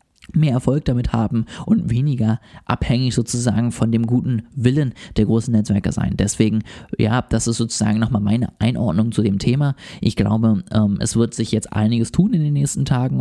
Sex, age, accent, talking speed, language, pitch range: male, 20-39, German, 175 wpm, German, 105-125 Hz